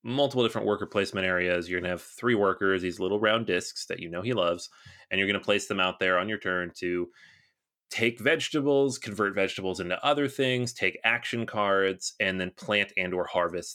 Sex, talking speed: male, 210 wpm